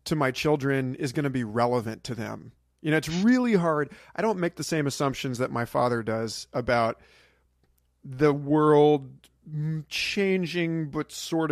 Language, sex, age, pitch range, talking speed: English, male, 40-59, 125-155 Hz, 160 wpm